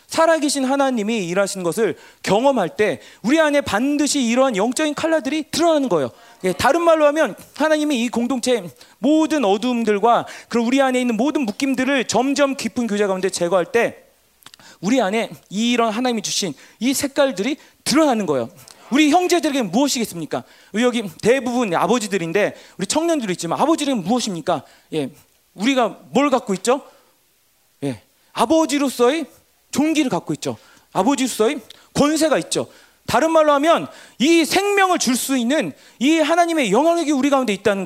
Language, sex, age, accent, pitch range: Korean, male, 40-59, native, 235-315 Hz